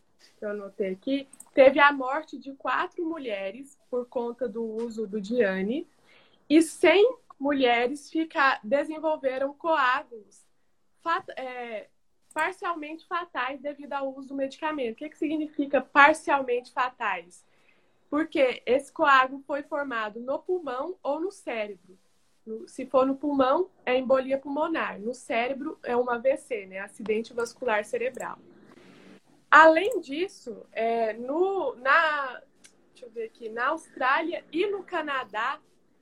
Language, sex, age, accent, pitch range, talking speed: Portuguese, female, 20-39, Brazilian, 245-315 Hz, 130 wpm